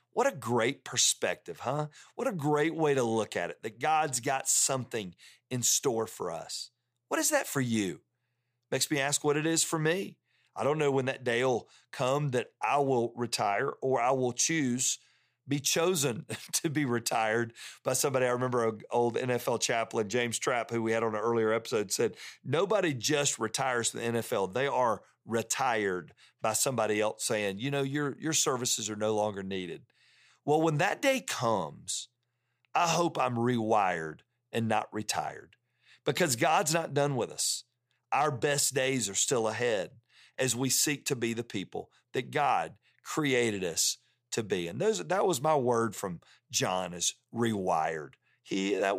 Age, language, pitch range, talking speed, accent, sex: 40-59, English, 115-145 Hz, 175 wpm, American, male